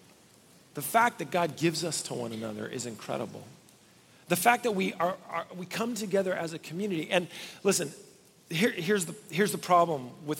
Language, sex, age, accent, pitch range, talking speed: English, male, 40-59, American, 165-235 Hz, 185 wpm